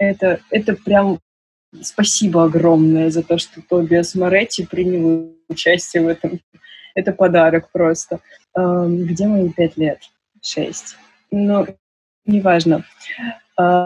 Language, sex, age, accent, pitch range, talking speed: Russian, female, 20-39, native, 175-195 Hz, 105 wpm